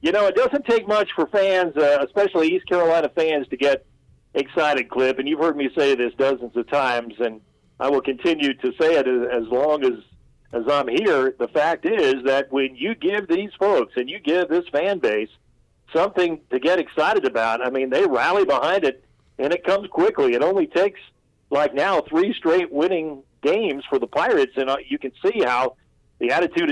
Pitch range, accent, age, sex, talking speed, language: 135-200 Hz, American, 50-69, male, 200 wpm, English